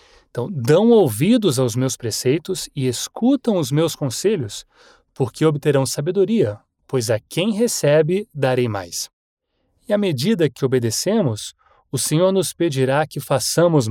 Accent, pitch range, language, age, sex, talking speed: Brazilian, 125-180 Hz, English, 30-49, male, 135 wpm